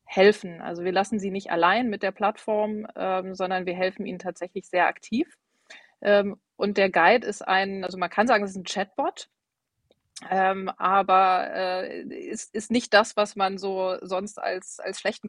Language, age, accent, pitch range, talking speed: German, 30-49, German, 190-215 Hz, 185 wpm